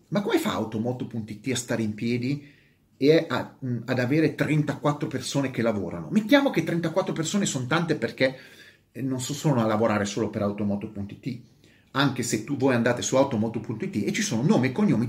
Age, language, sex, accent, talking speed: 30-49, Italian, male, native, 170 wpm